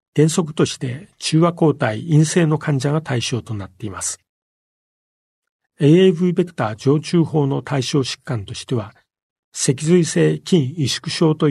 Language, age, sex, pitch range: Japanese, 40-59, male, 115-155 Hz